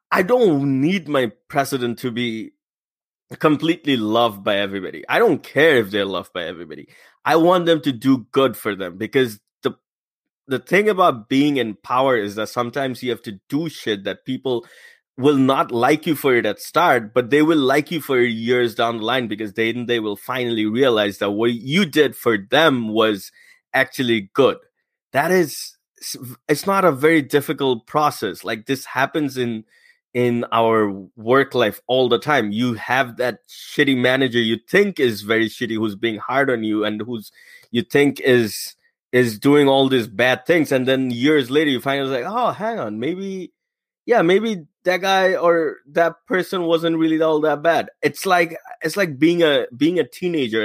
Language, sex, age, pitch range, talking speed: English, male, 20-39, 115-160 Hz, 185 wpm